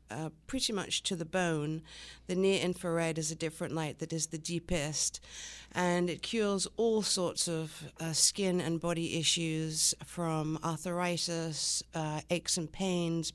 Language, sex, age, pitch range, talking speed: English, female, 50-69, 160-180 Hz, 150 wpm